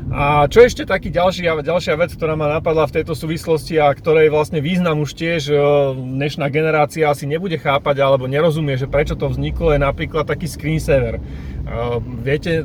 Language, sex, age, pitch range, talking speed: Slovak, male, 30-49, 135-155 Hz, 170 wpm